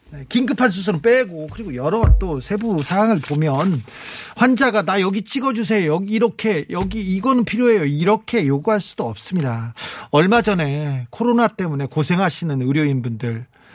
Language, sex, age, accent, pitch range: Korean, male, 40-59, native, 145-215 Hz